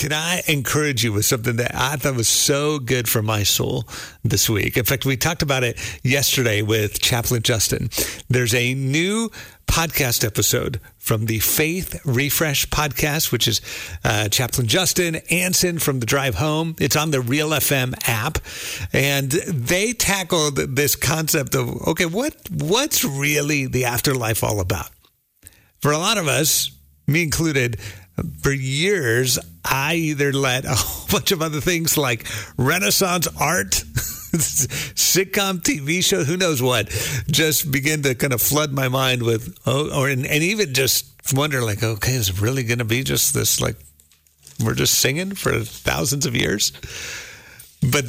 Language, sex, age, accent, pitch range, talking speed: English, male, 50-69, American, 120-155 Hz, 160 wpm